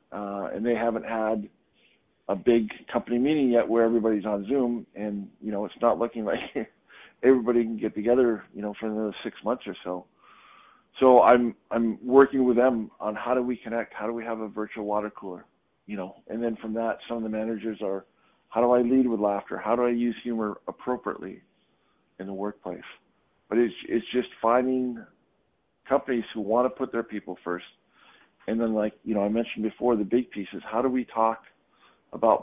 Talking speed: 200 wpm